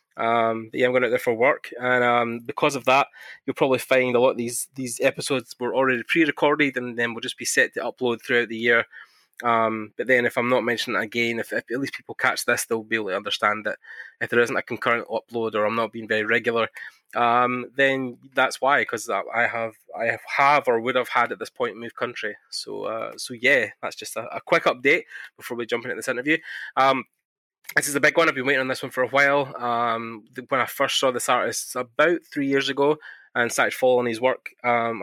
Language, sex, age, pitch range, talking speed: English, male, 20-39, 115-130 Hz, 235 wpm